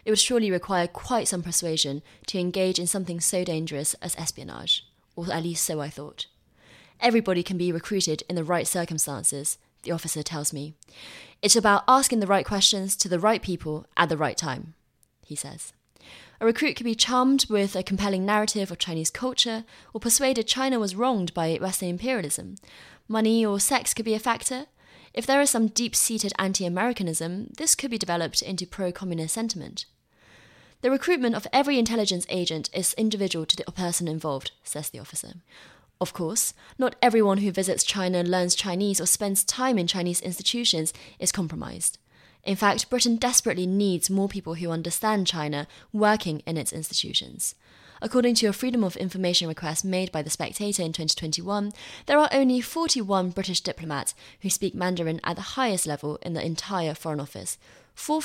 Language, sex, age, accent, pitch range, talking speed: English, female, 20-39, British, 165-225 Hz, 170 wpm